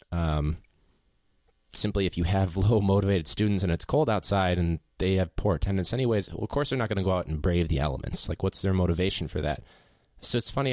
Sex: male